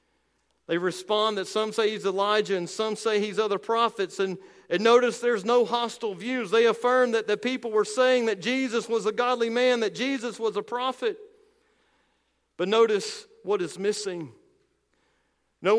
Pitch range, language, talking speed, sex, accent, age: 180-230 Hz, English, 165 wpm, male, American, 50-69